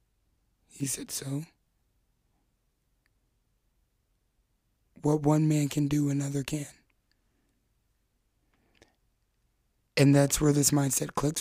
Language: English